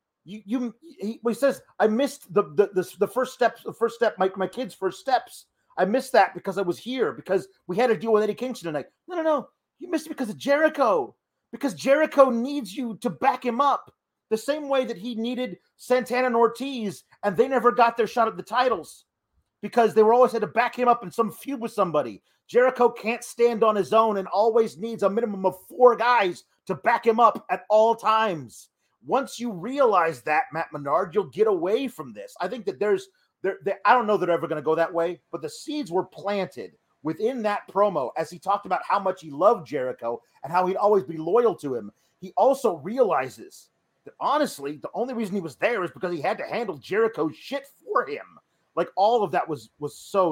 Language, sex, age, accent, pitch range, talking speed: English, male, 40-59, American, 180-250 Hz, 225 wpm